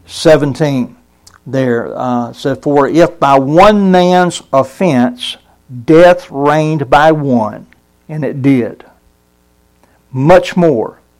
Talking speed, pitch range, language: 100 wpm, 125-160 Hz, English